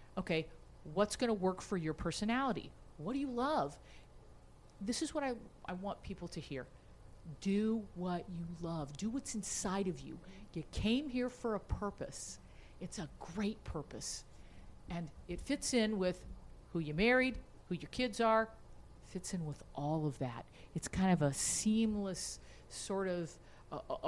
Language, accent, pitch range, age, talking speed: English, American, 145-205 Hz, 50-69, 160 wpm